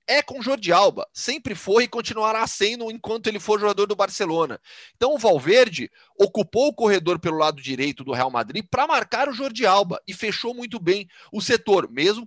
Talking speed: 195 wpm